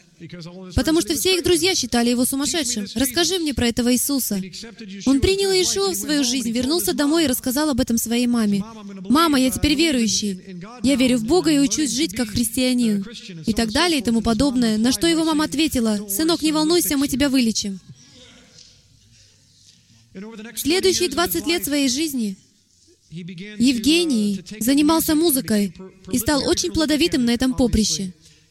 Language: Russian